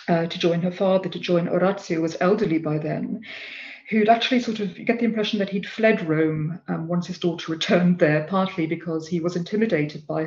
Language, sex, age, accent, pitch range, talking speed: English, female, 40-59, British, 175-210 Hz, 210 wpm